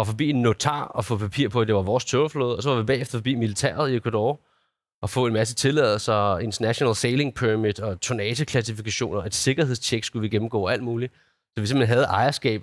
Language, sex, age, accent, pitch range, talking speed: Danish, male, 30-49, native, 105-130 Hz, 220 wpm